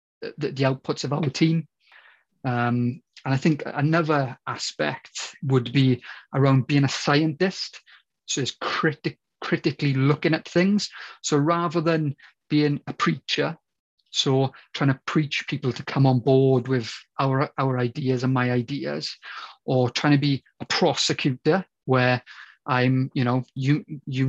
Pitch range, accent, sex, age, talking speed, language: 130-155 Hz, British, male, 30-49, 145 wpm, English